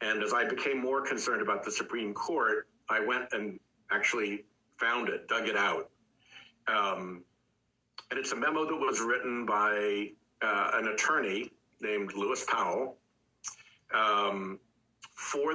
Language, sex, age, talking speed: English, male, 60-79, 140 wpm